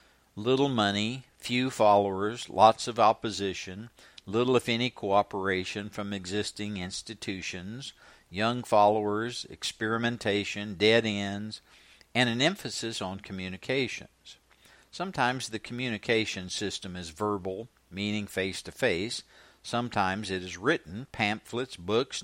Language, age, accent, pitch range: English, 60-79, American, 100-125 Hz